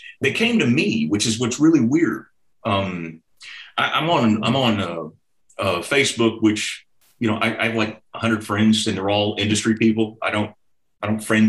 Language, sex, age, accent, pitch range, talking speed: English, male, 40-59, American, 105-130 Hz, 195 wpm